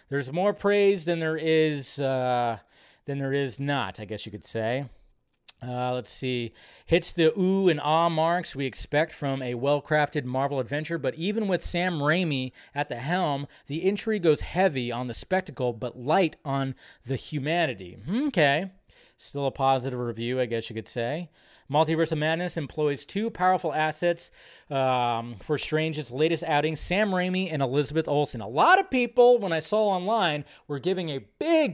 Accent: American